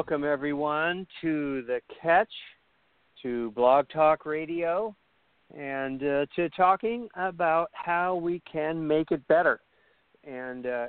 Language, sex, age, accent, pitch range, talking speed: English, male, 50-69, American, 130-160 Hz, 115 wpm